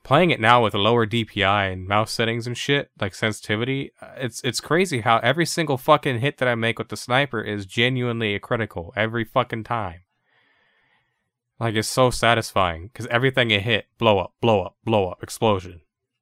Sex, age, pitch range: male, 20-39, 95-125 Hz